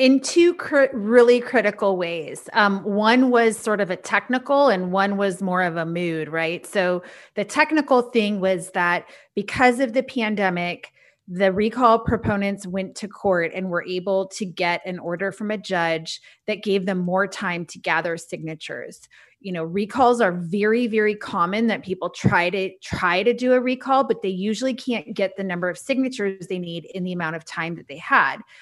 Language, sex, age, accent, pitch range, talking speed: English, female, 30-49, American, 175-220 Hz, 185 wpm